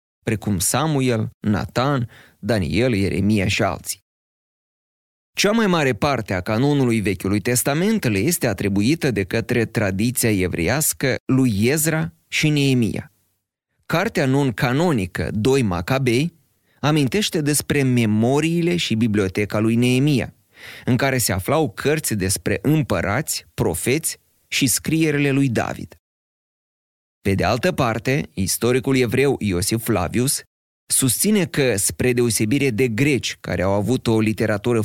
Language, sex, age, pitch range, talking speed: Romanian, male, 30-49, 105-140 Hz, 115 wpm